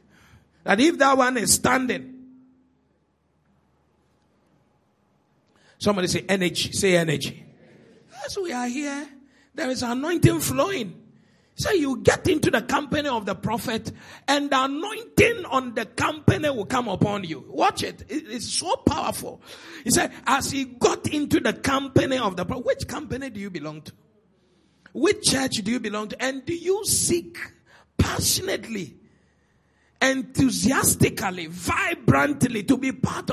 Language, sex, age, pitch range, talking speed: English, male, 50-69, 200-270 Hz, 140 wpm